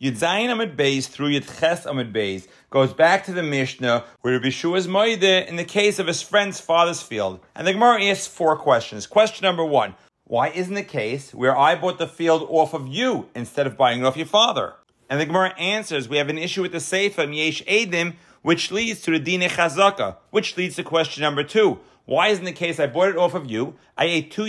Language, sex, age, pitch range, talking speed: English, male, 40-59, 135-180 Hz, 215 wpm